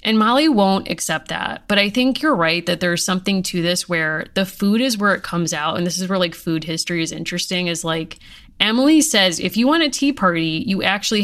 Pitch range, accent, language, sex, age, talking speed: 175-225 Hz, American, English, female, 30-49, 235 wpm